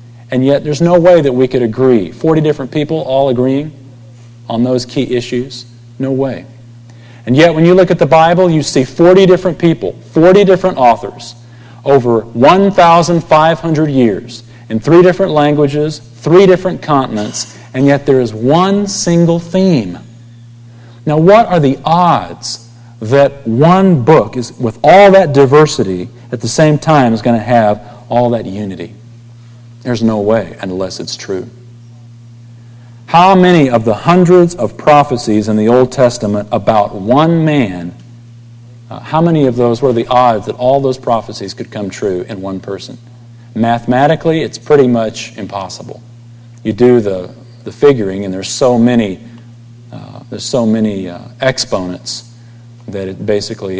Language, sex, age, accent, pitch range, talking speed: English, male, 40-59, American, 115-145 Hz, 155 wpm